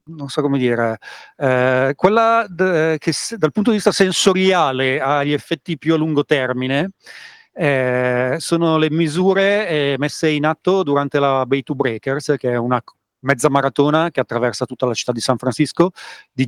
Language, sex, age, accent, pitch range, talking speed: Italian, male, 40-59, native, 130-165 Hz, 170 wpm